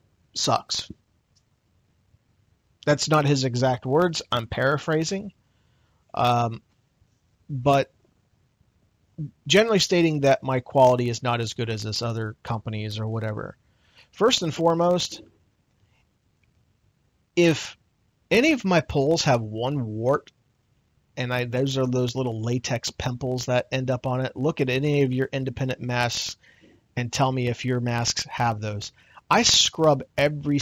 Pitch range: 115-145 Hz